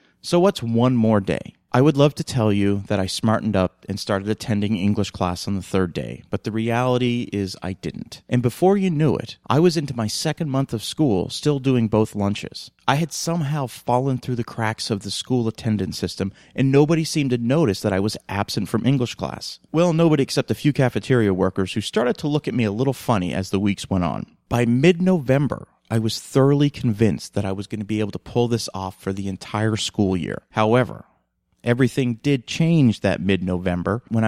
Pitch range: 100-130 Hz